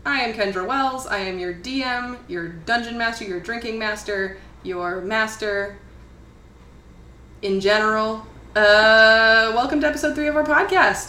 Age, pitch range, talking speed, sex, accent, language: 20-39, 200-310 Hz, 140 wpm, female, American, English